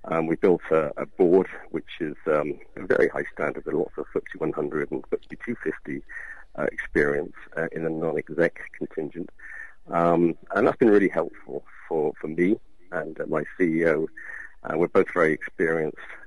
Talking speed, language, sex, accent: 170 wpm, English, male, British